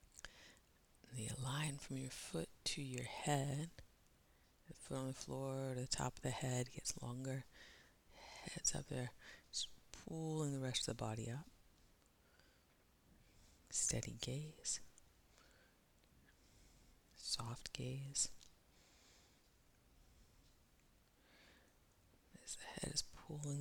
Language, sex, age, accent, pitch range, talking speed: English, female, 30-49, American, 115-145 Hz, 105 wpm